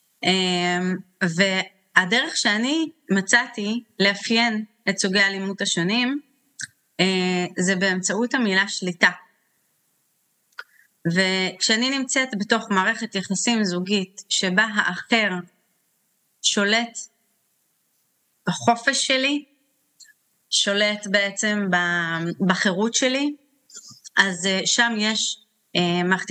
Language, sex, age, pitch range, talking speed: Hebrew, female, 30-49, 190-235 Hz, 70 wpm